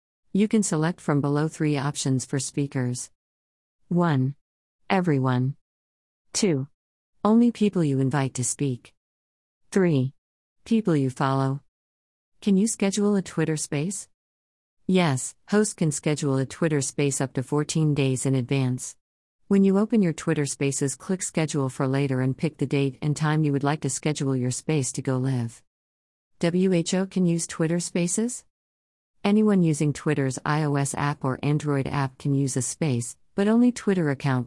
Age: 40-59